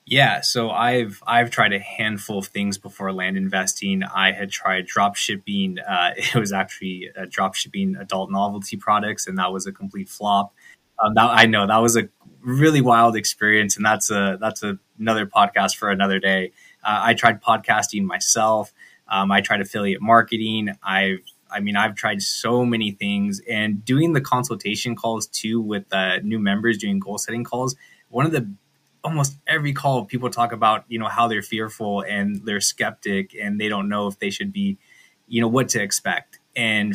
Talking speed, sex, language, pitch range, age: 185 wpm, male, English, 100-125 Hz, 20-39